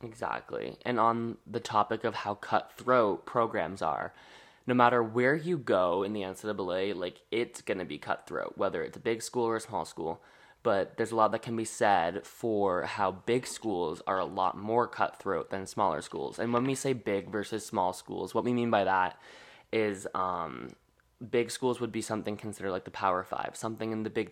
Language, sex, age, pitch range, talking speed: English, male, 20-39, 100-115 Hz, 200 wpm